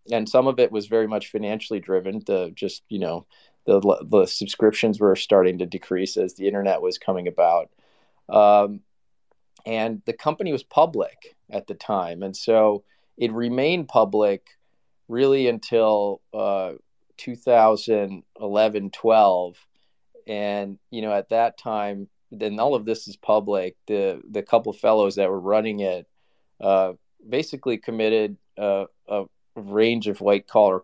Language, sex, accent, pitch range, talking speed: English, male, American, 100-115 Hz, 145 wpm